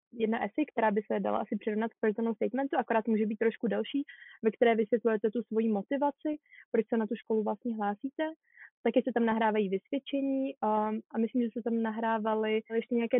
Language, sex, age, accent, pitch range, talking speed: Czech, female, 20-39, native, 225-260 Hz, 195 wpm